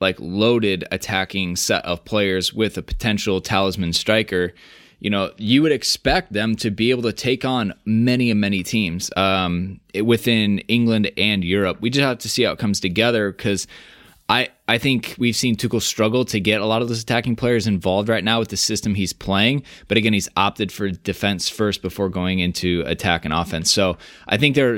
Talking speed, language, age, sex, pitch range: 200 wpm, English, 20-39, male, 95-115 Hz